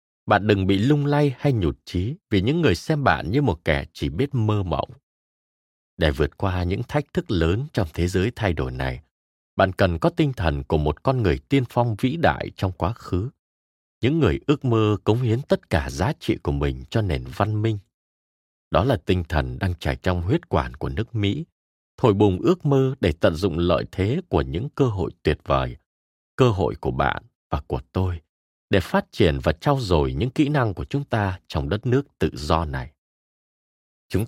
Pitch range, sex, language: 75-120 Hz, male, Vietnamese